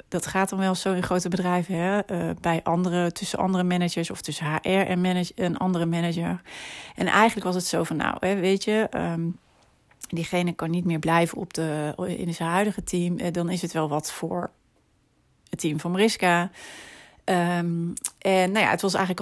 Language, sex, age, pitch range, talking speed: Dutch, female, 30-49, 165-190 Hz, 195 wpm